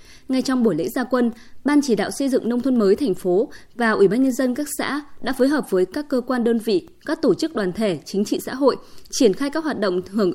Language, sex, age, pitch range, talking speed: Vietnamese, female, 20-39, 210-275 Hz, 275 wpm